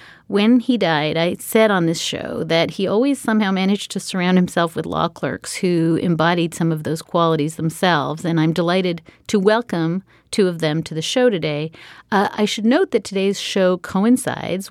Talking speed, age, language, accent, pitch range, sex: 190 wpm, 40-59, English, American, 165-200 Hz, female